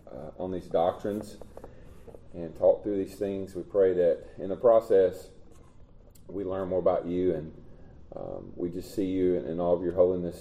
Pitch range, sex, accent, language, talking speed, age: 85-95 Hz, male, American, English, 185 wpm, 30-49